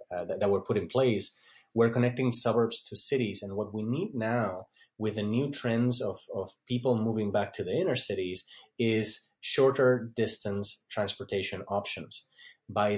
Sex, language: male, English